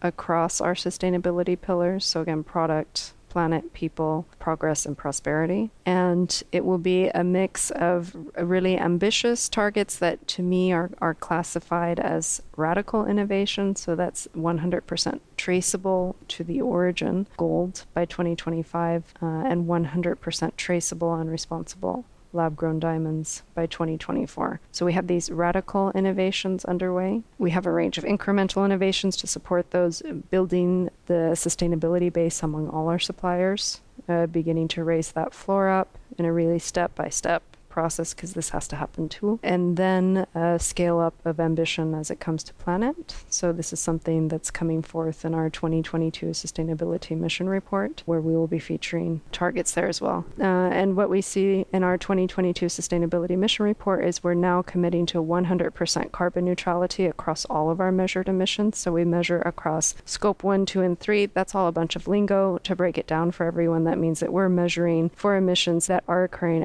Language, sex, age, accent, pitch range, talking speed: English, female, 40-59, American, 165-185 Hz, 165 wpm